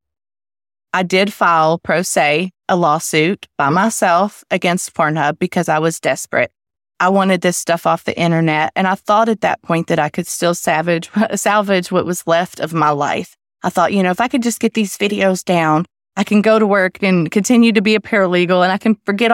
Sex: female